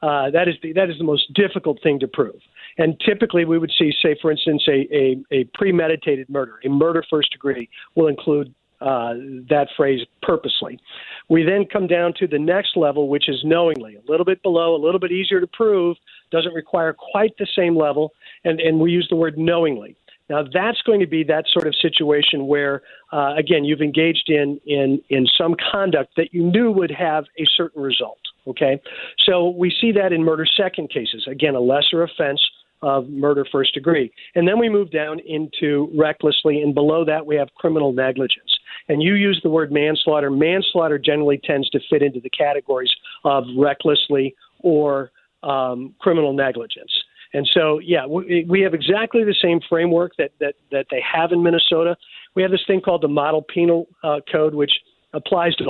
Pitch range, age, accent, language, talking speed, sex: 145-175 Hz, 50-69, American, English, 190 wpm, male